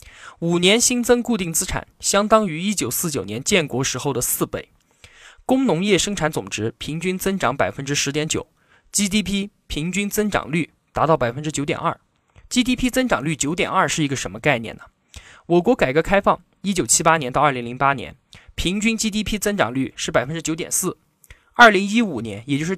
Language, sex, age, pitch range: Chinese, male, 20-39, 140-205 Hz